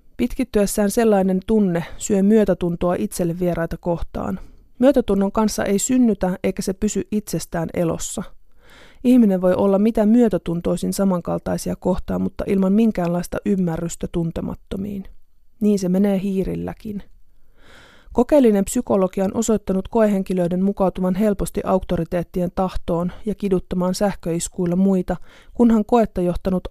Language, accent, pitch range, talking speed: Finnish, native, 175-210 Hz, 110 wpm